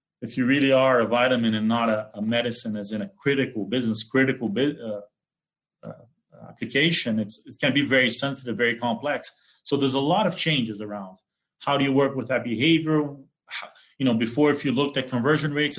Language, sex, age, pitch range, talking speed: English, male, 30-49, 115-145 Hz, 190 wpm